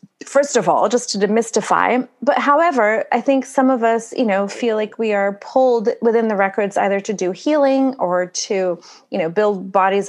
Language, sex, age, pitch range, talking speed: English, female, 30-49, 200-255 Hz, 195 wpm